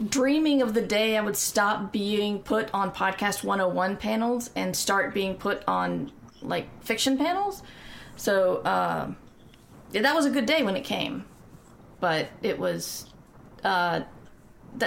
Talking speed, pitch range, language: 145 wpm, 195-235 Hz, English